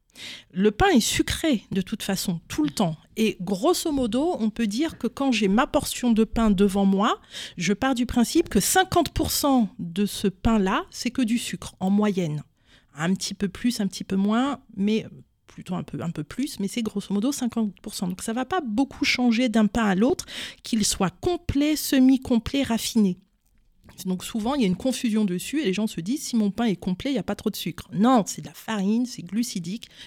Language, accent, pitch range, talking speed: French, French, 195-260 Hz, 215 wpm